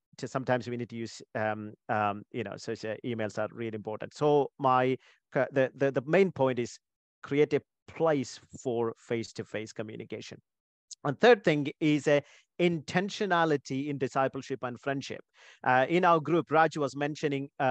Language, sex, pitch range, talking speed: English, male, 125-165 Hz, 165 wpm